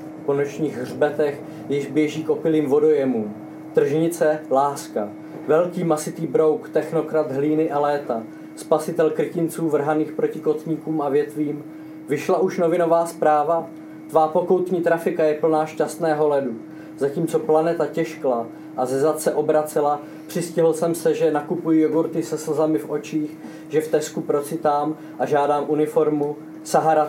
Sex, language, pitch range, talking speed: male, Czech, 145-155 Hz, 130 wpm